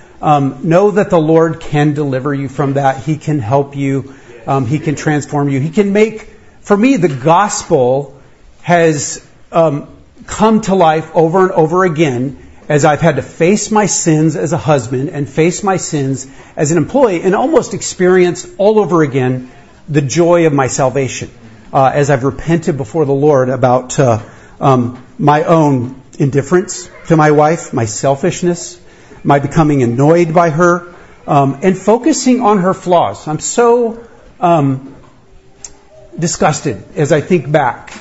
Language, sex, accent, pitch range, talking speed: English, male, American, 135-175 Hz, 160 wpm